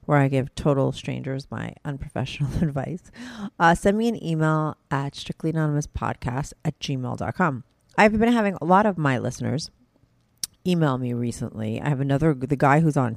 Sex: female